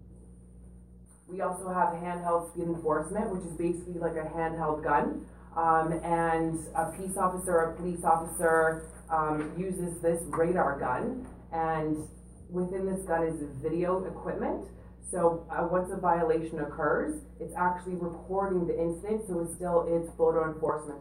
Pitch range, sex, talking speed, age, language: 155-175 Hz, female, 145 wpm, 20-39, English